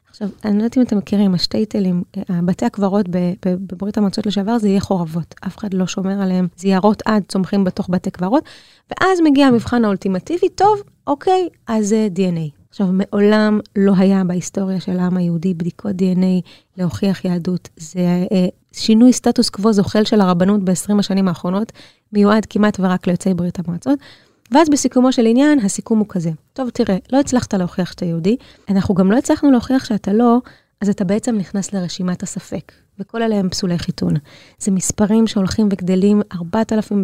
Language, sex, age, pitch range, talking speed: Hebrew, female, 20-39, 185-225 Hz, 170 wpm